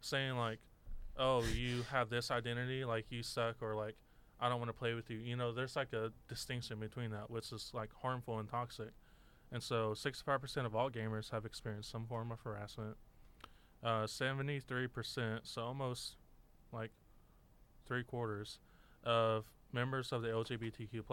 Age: 20-39